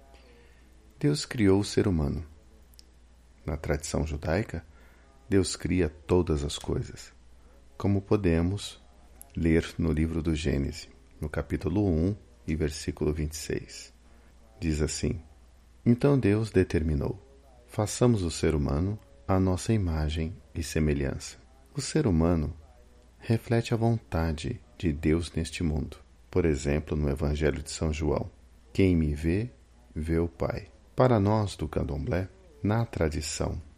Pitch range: 75-95 Hz